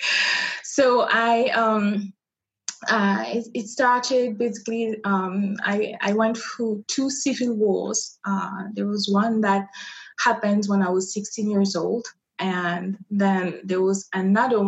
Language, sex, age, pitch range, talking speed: English, female, 20-39, 190-220 Hz, 135 wpm